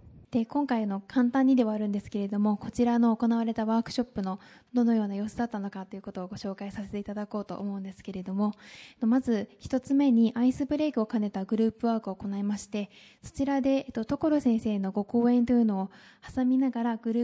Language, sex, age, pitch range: Japanese, female, 20-39, 205-245 Hz